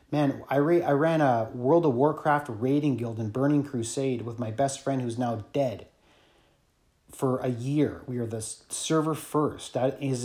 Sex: male